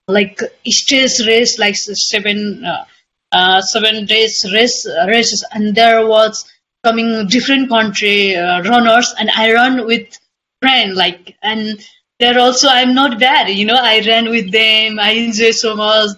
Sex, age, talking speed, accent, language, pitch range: female, 20-39, 150 wpm, Indian, English, 205-240 Hz